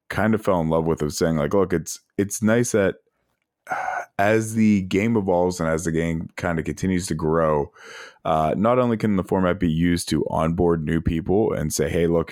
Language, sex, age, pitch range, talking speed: English, male, 20-39, 80-100 Hz, 210 wpm